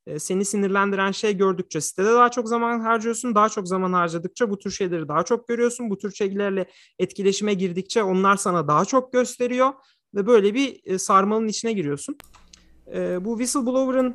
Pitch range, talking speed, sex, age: 170-215 Hz, 155 wpm, male, 40-59